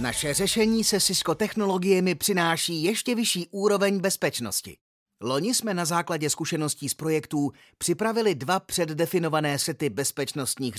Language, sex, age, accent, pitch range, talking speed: Czech, male, 30-49, native, 140-180 Hz, 120 wpm